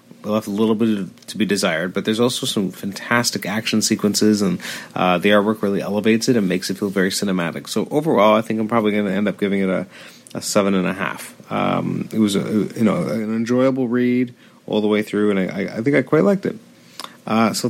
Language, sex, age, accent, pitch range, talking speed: English, male, 30-49, American, 100-125 Hz, 230 wpm